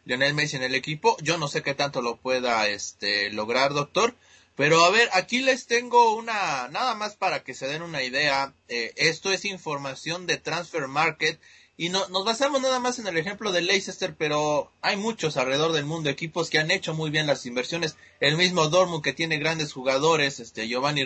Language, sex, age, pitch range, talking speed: Spanish, male, 30-49, 145-225 Hz, 200 wpm